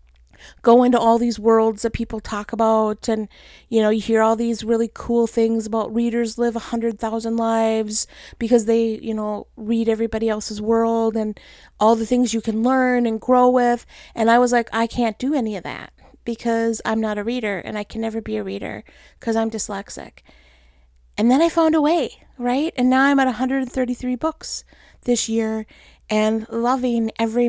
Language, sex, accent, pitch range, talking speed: English, female, American, 225-270 Hz, 190 wpm